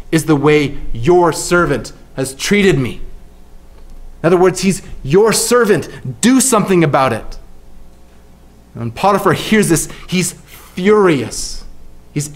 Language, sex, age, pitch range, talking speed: English, male, 30-49, 130-210 Hz, 120 wpm